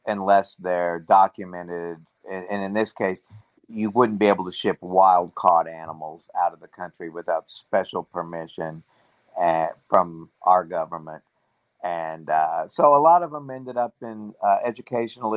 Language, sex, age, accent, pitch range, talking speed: English, male, 50-69, American, 90-105 Hz, 145 wpm